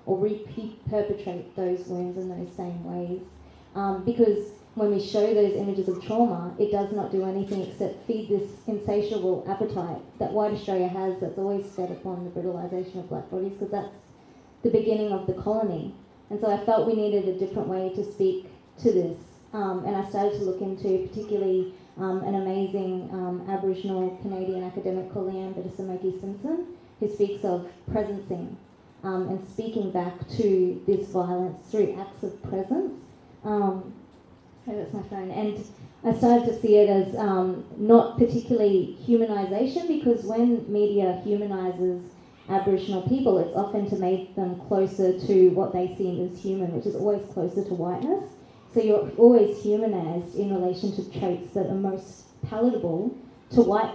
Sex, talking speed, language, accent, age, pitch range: female, 165 wpm, English, Australian, 20-39, 185-210 Hz